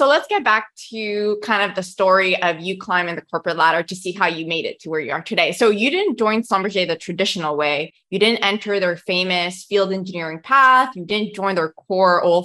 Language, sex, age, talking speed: English, female, 20-39, 230 wpm